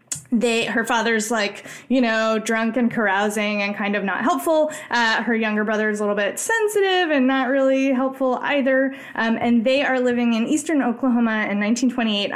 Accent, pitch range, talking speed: American, 210-260 Hz, 185 wpm